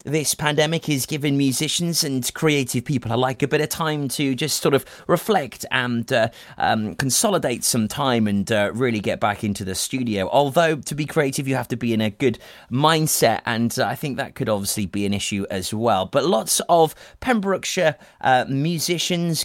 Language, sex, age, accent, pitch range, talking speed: English, male, 30-49, British, 110-160 Hz, 190 wpm